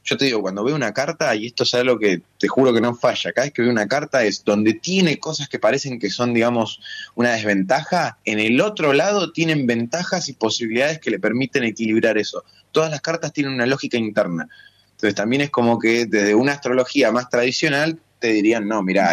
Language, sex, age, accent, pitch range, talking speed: Spanish, male, 20-39, Argentinian, 105-135 Hz, 215 wpm